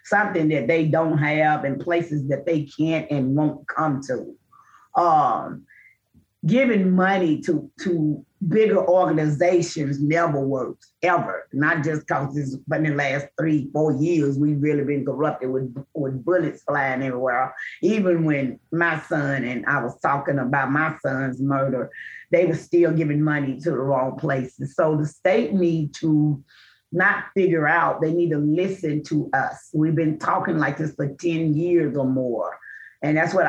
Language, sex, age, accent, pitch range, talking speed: English, female, 30-49, American, 145-170 Hz, 165 wpm